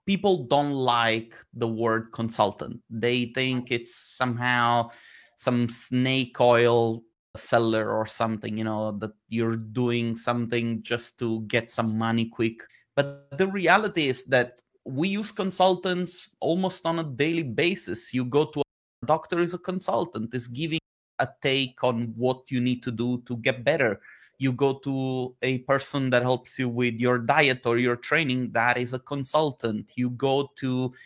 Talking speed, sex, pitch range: 160 wpm, male, 120-140 Hz